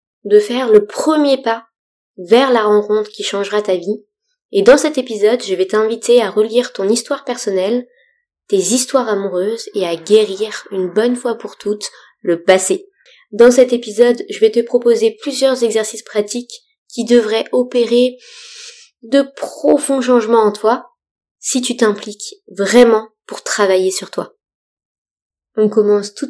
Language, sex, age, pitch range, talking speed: French, female, 20-39, 205-260 Hz, 150 wpm